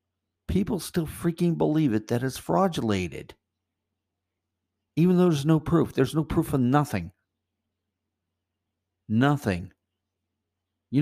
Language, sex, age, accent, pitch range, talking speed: English, male, 50-69, American, 95-130 Hz, 110 wpm